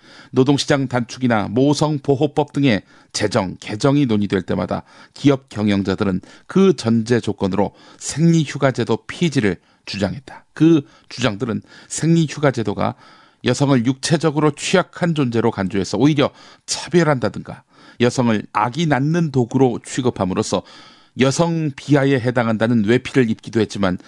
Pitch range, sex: 110-150 Hz, male